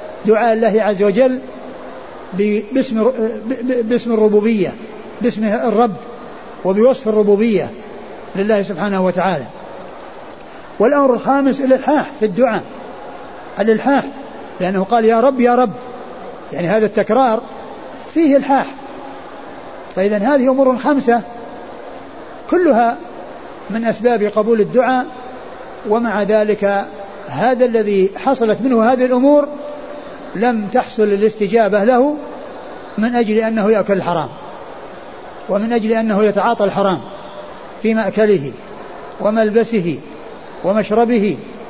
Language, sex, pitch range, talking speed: Arabic, male, 205-245 Hz, 95 wpm